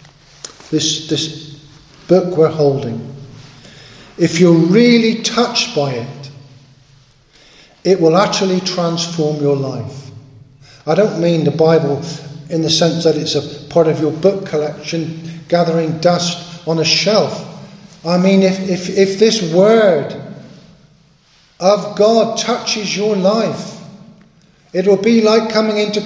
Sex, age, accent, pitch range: male, 50-69, British, 155-205 Hz